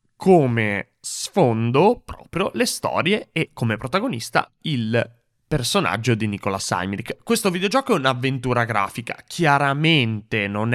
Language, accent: Italian, native